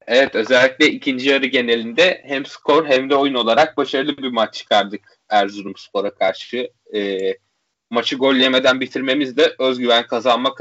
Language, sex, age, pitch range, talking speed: Turkish, male, 30-49, 125-165 Hz, 145 wpm